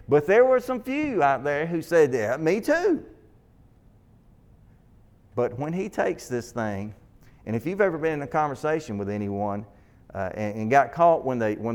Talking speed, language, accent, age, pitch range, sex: 175 wpm, English, American, 40-59, 115-195 Hz, male